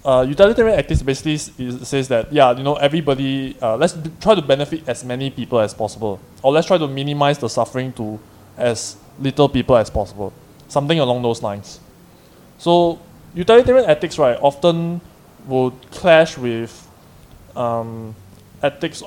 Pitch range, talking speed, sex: 115-155 Hz, 155 wpm, male